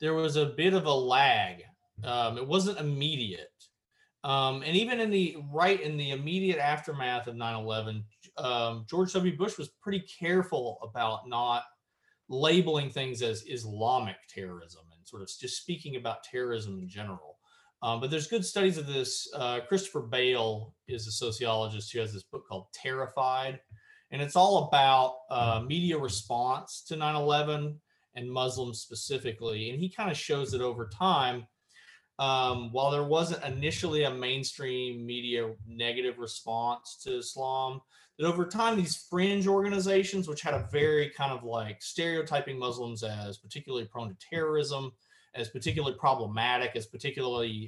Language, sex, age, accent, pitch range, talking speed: English, male, 30-49, American, 115-155 Hz, 155 wpm